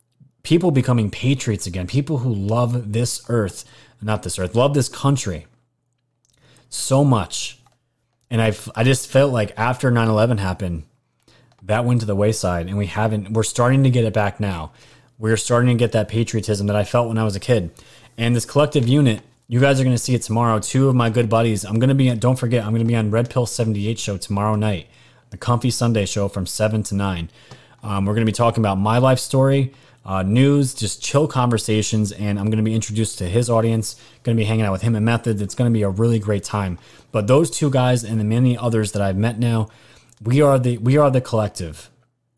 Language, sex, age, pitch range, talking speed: English, male, 30-49, 105-125 Hz, 225 wpm